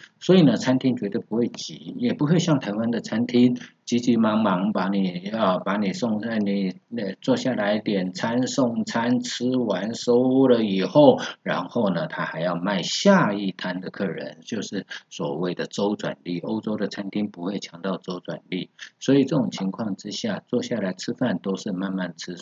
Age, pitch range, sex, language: 50-69, 95-125 Hz, male, Chinese